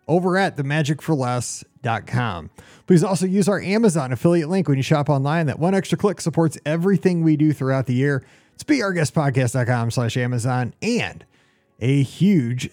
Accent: American